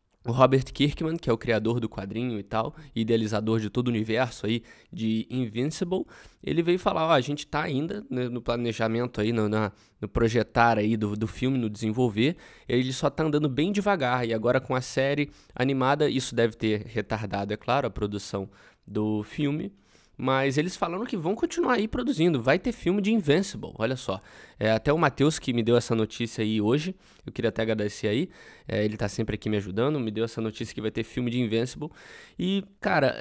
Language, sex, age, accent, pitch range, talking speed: Portuguese, male, 20-39, Brazilian, 110-140 Hz, 200 wpm